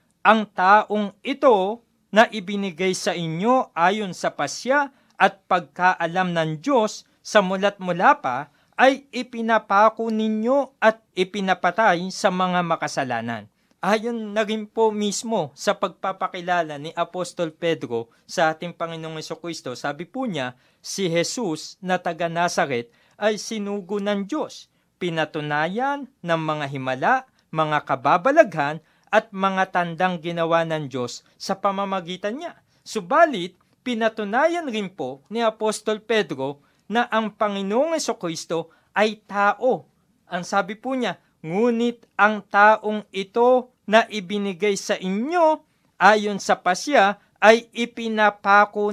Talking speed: 115 wpm